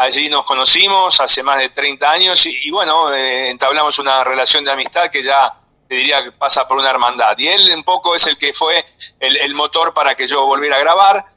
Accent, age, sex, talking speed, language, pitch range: Argentinian, 40-59, male, 225 wpm, Spanish, 135-175 Hz